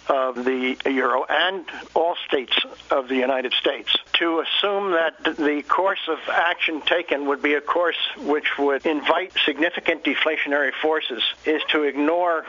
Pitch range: 135-165 Hz